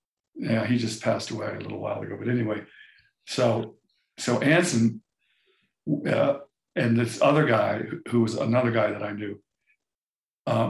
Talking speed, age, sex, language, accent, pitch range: 150 wpm, 60-79, male, English, American, 115-160 Hz